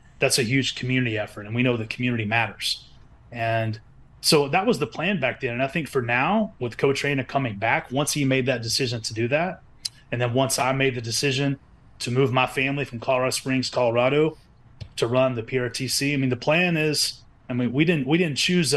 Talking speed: 215 wpm